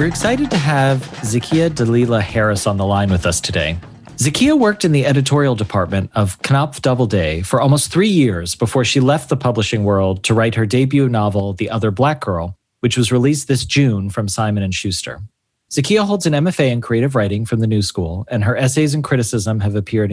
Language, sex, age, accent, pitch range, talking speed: English, male, 30-49, American, 110-140 Hz, 205 wpm